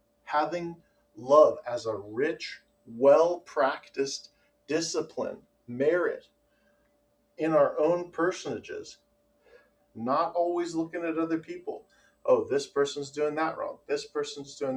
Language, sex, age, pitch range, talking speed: English, male, 40-59, 120-165 Hz, 110 wpm